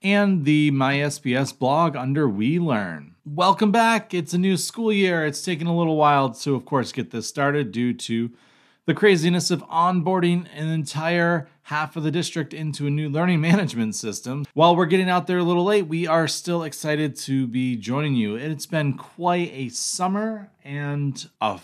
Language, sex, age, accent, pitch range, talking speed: English, male, 30-49, American, 125-165 Hz, 185 wpm